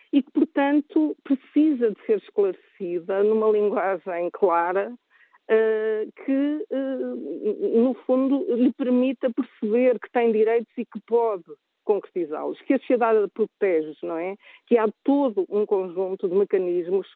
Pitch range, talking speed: 200-295 Hz, 125 wpm